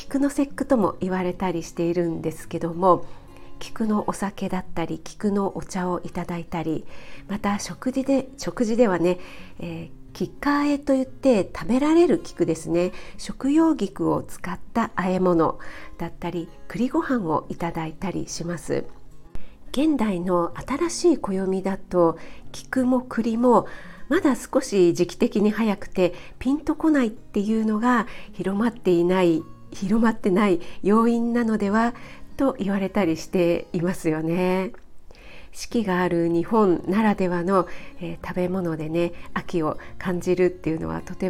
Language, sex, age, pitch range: Japanese, female, 50-69, 175-215 Hz